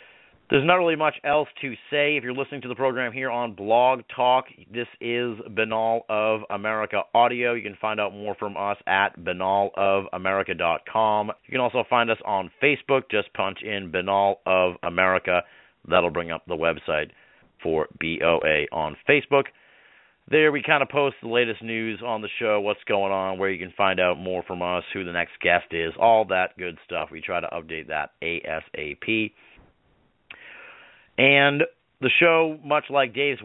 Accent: American